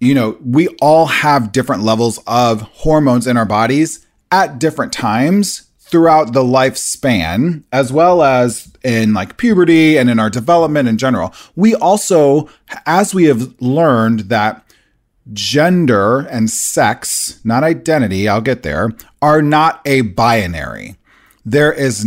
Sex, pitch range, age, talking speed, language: male, 115-150 Hz, 30-49, 140 wpm, English